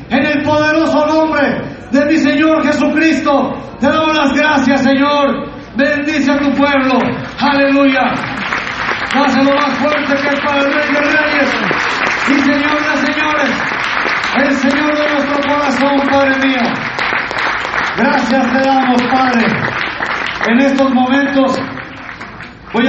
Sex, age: male, 40-59